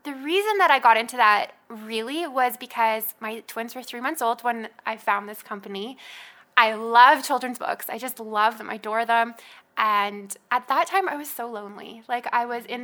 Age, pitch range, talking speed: 20-39, 225-275 Hz, 205 wpm